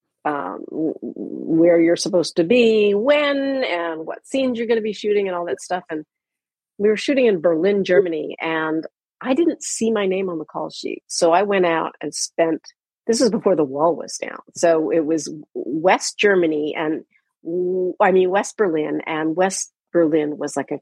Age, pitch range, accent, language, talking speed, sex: 40-59, 160-235 Hz, American, English, 185 wpm, female